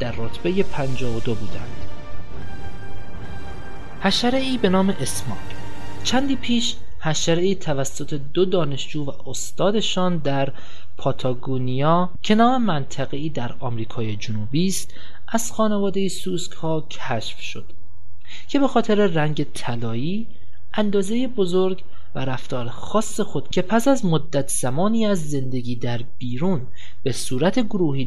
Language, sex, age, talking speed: Persian, male, 30-49, 120 wpm